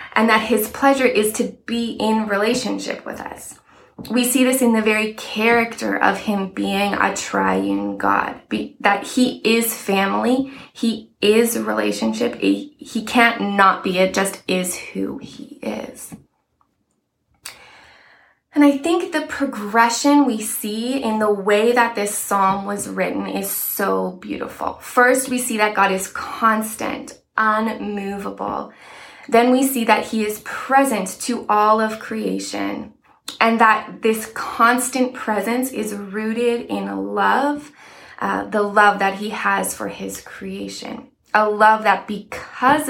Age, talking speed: 20-39, 145 wpm